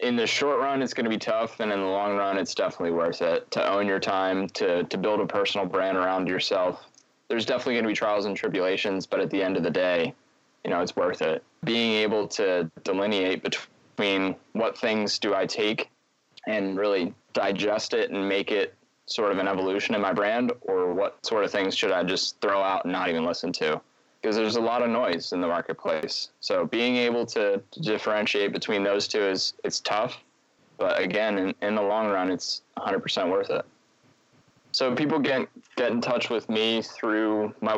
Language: English